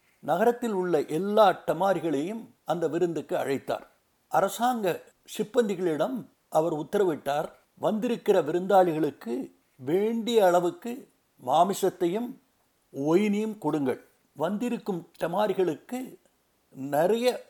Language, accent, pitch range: Tamil, native, 165-225 Hz